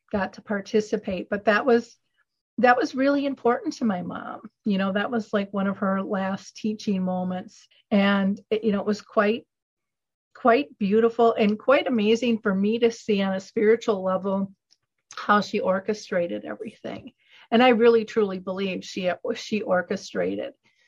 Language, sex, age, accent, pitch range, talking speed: English, female, 40-59, American, 185-220 Hz, 160 wpm